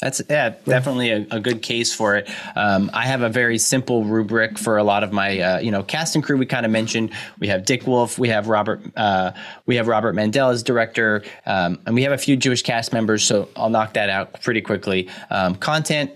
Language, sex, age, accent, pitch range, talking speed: English, male, 20-39, American, 110-130 Hz, 235 wpm